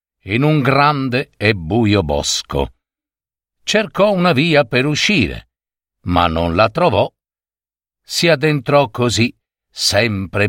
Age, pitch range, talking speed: 50-69, 95-155 Hz, 110 wpm